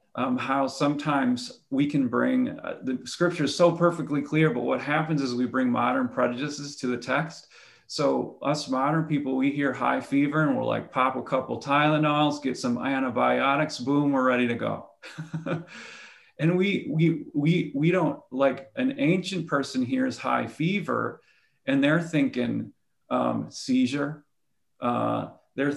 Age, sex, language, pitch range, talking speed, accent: 40-59, male, English, 120-155 Hz, 155 wpm, American